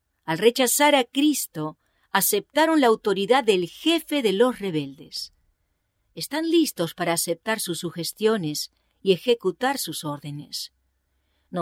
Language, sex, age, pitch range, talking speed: English, female, 40-59, 165-255 Hz, 120 wpm